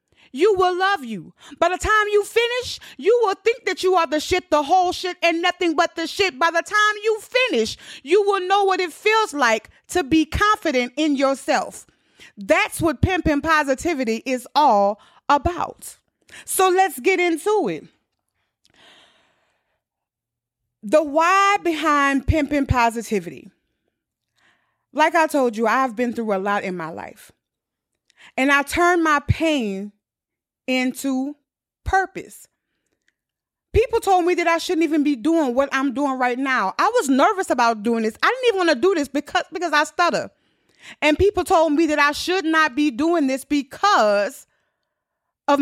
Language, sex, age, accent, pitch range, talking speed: English, female, 30-49, American, 270-365 Hz, 160 wpm